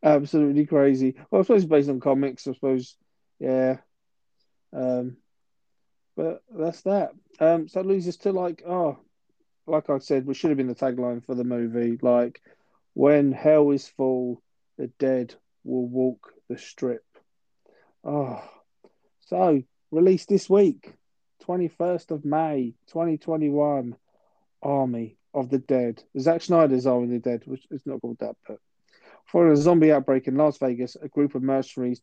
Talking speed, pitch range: 155 wpm, 130-150 Hz